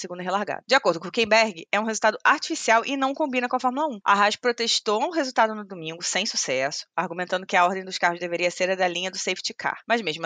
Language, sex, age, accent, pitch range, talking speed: Portuguese, female, 20-39, Brazilian, 175-230 Hz, 250 wpm